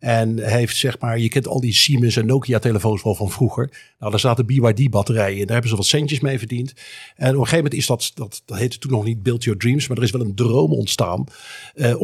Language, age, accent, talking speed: Dutch, 50-69, Dutch, 255 wpm